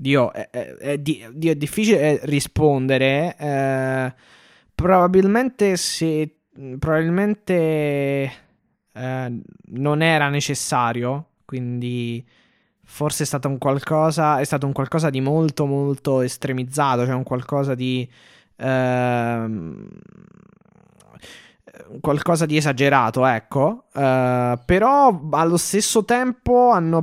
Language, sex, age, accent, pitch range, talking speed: Italian, male, 20-39, native, 135-170 Hz, 100 wpm